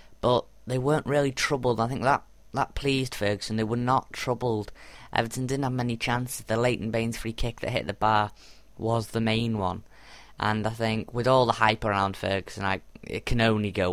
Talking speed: 200 wpm